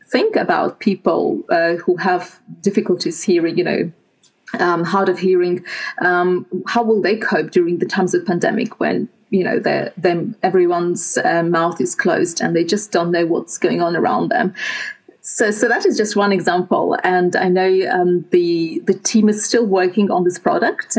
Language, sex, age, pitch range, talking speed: English, female, 30-49, 175-205 Hz, 175 wpm